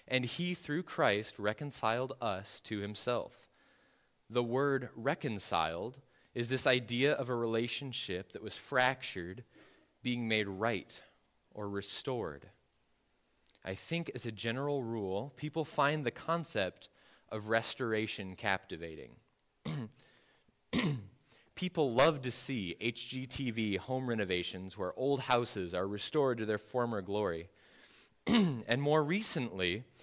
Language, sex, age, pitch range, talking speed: English, male, 20-39, 110-145 Hz, 115 wpm